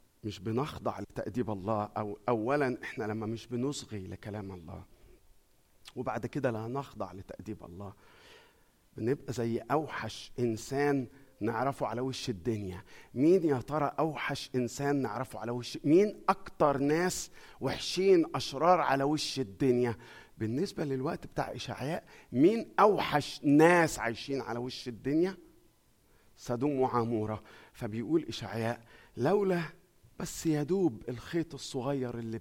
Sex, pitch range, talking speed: male, 110-145 Hz, 115 wpm